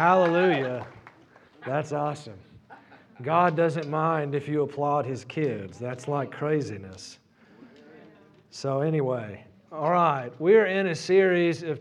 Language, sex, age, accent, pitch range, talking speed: English, male, 40-59, American, 150-185 Hz, 115 wpm